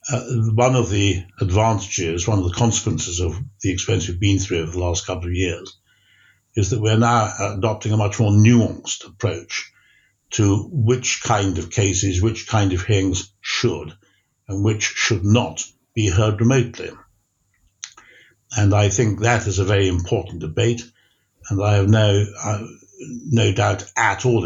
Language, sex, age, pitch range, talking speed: English, male, 60-79, 95-115 Hz, 160 wpm